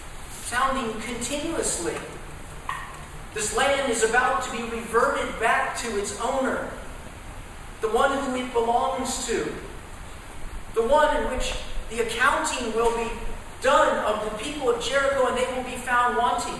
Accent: American